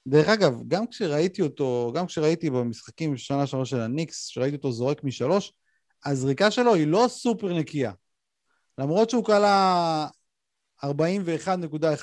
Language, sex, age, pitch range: Hebrew, male, 30-49, 135-185 Hz